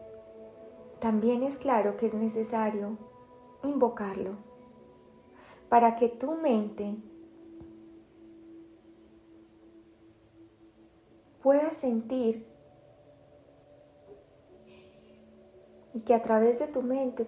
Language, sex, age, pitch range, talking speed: Spanish, female, 30-49, 195-245 Hz, 70 wpm